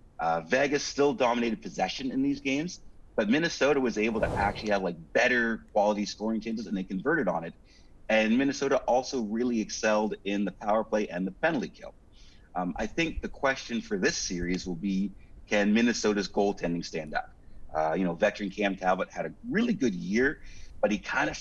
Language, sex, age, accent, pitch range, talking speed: English, male, 30-49, American, 95-115 Hz, 190 wpm